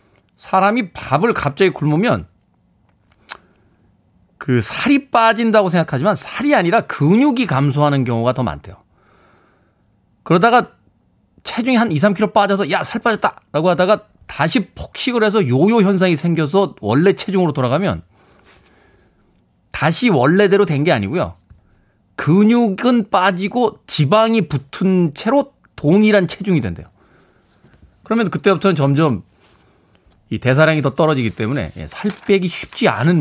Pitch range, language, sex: 115-195 Hz, Korean, male